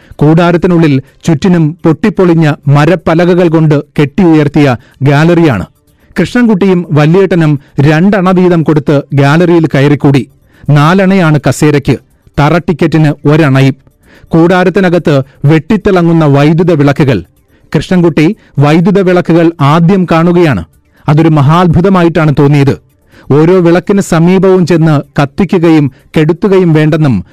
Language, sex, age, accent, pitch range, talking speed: Malayalam, male, 40-59, native, 145-175 Hz, 85 wpm